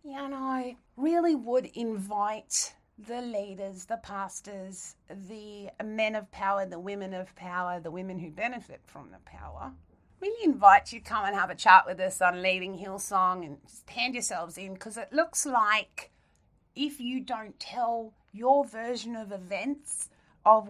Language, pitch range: English, 185-235 Hz